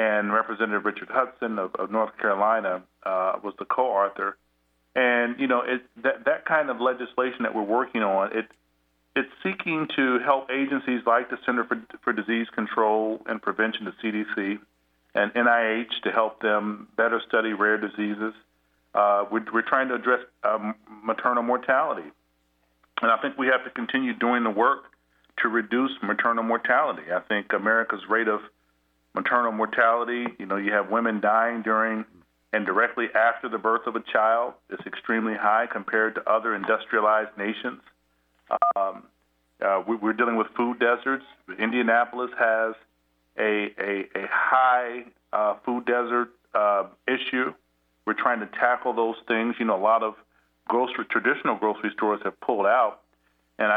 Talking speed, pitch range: 160 wpm, 105-120 Hz